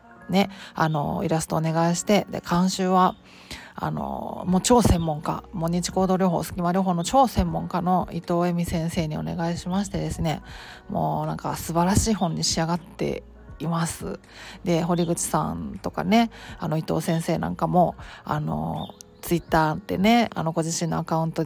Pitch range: 165-195 Hz